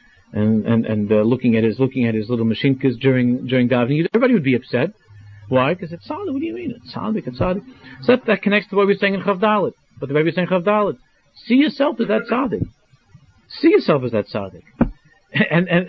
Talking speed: 220 wpm